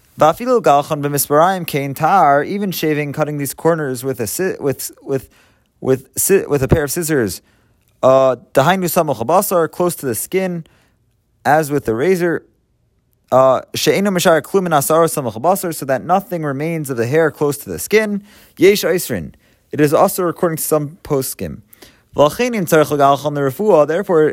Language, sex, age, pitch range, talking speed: English, male, 30-49, 135-180 Hz, 110 wpm